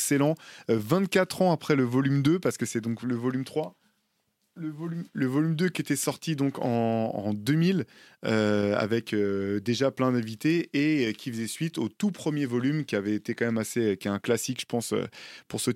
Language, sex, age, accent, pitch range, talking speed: French, male, 20-39, French, 115-140 Hz, 210 wpm